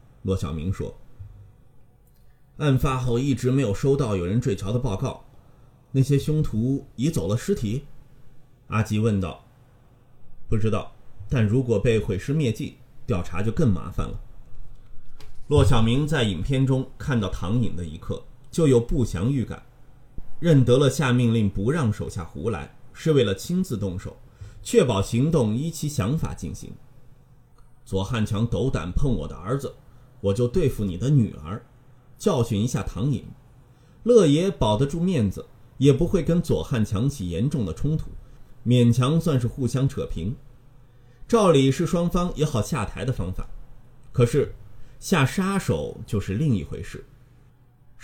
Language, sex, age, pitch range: Chinese, male, 30-49, 105-135 Hz